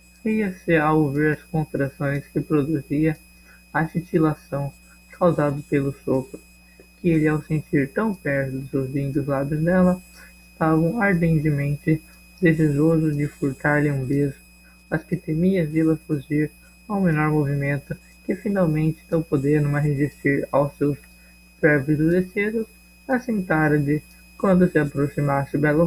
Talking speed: 125 wpm